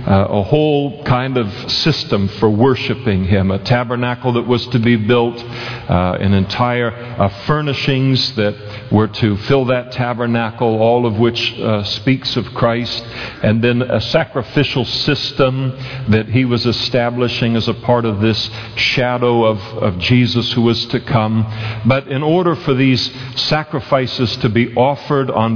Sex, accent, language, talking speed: male, American, English, 155 wpm